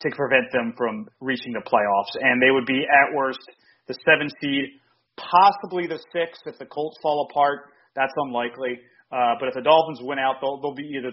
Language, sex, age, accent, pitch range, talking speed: English, male, 30-49, American, 130-160 Hz, 200 wpm